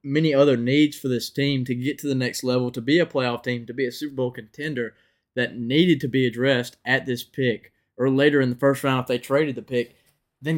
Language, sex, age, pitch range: English, male, 20-39, 120-140 Hz